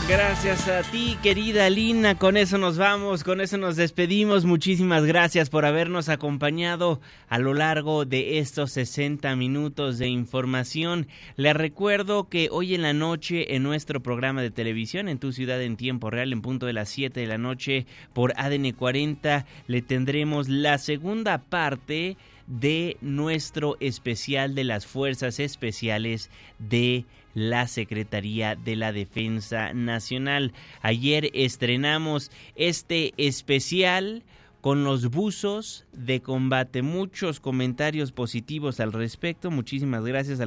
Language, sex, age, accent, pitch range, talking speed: Spanish, male, 20-39, Mexican, 125-155 Hz, 135 wpm